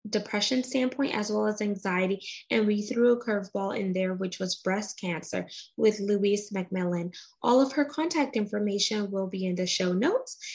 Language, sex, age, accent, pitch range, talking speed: English, female, 20-39, American, 195-245 Hz, 175 wpm